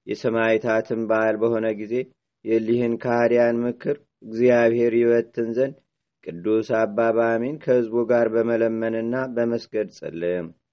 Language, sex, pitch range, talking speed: Amharic, male, 110-120 Hz, 95 wpm